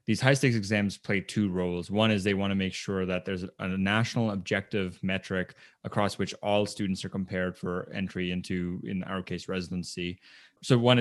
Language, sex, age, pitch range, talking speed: English, male, 20-39, 95-105 Hz, 185 wpm